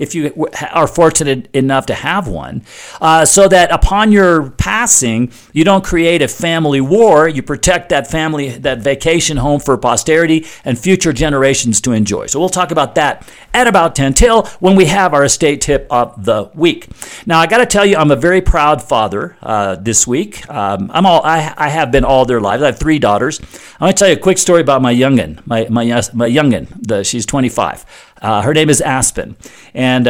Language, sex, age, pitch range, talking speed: English, male, 50-69, 130-170 Hz, 205 wpm